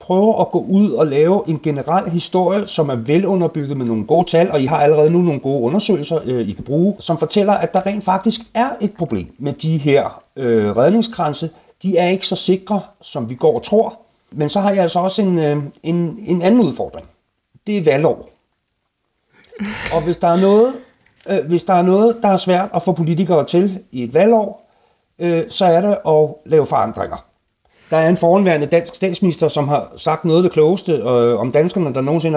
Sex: male